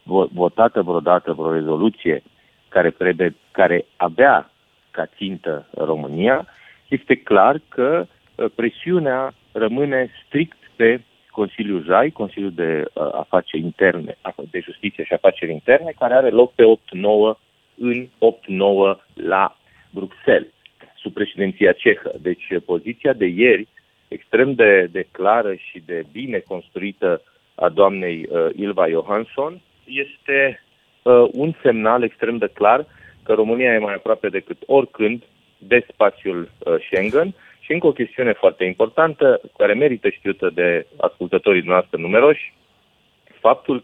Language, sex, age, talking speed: Romanian, male, 40-59, 120 wpm